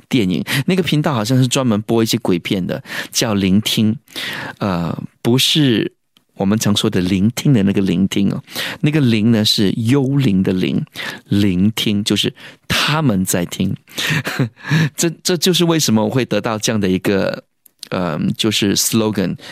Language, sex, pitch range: Chinese, male, 100-130 Hz